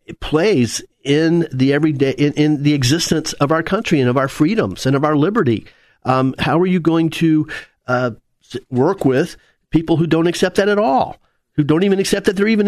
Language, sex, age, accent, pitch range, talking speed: English, male, 50-69, American, 130-160 Hz, 200 wpm